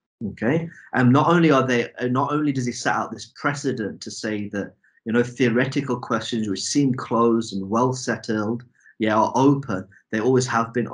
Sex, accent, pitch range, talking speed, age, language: male, British, 100-125 Hz, 190 wpm, 30-49, English